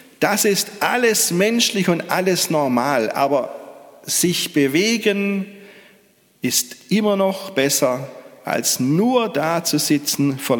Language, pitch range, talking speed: German, 135-185 Hz, 115 wpm